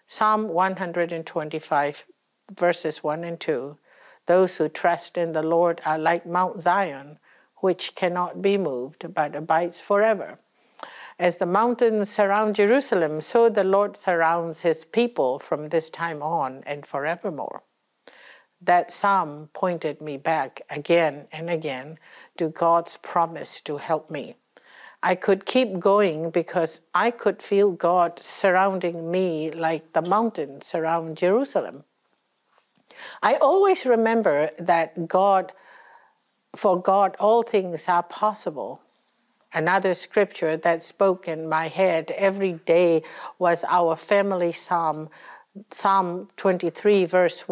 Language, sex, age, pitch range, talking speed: English, female, 60-79, 160-195 Hz, 120 wpm